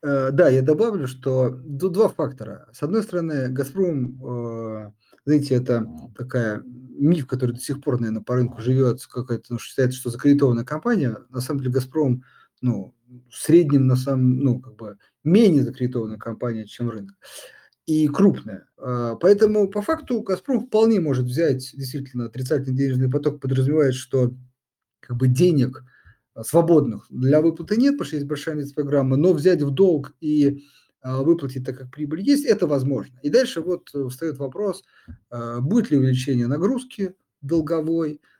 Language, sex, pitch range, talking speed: Russian, male, 125-160 Hz, 150 wpm